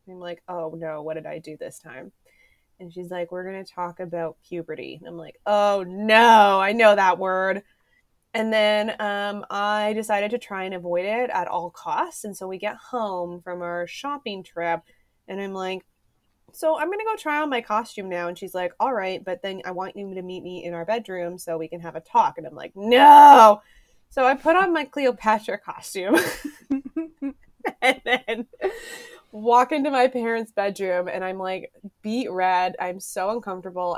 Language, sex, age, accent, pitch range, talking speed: English, female, 20-39, American, 175-235 Hz, 195 wpm